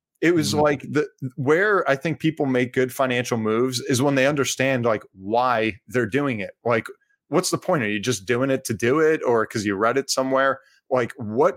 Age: 30-49